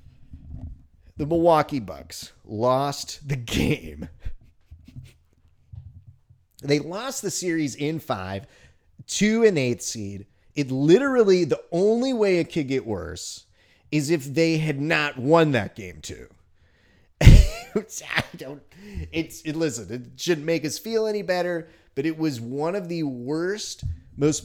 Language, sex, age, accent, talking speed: English, male, 30-49, American, 135 wpm